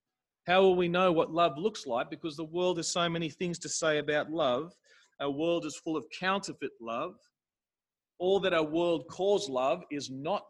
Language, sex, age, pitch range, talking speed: English, male, 40-59, 140-180 Hz, 195 wpm